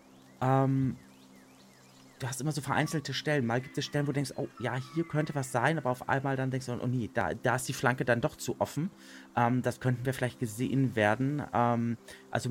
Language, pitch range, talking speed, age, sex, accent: German, 105-140 Hz, 220 wpm, 30-49, male, German